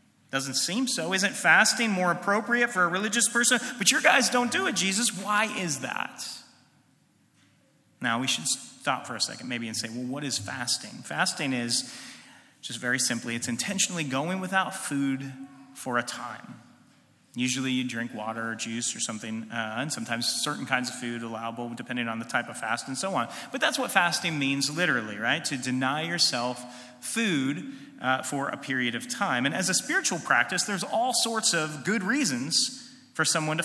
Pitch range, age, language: 130-190 Hz, 30-49, English